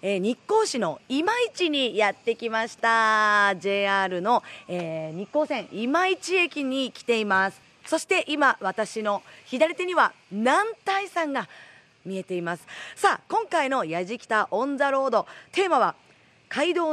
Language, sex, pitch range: Japanese, female, 185-295 Hz